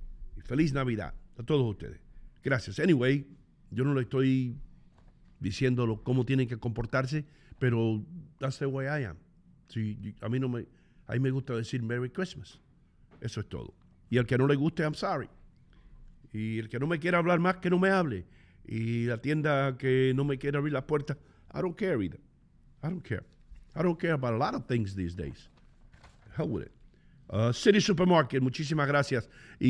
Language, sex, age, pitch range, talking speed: English, male, 50-69, 125-155 Hz, 190 wpm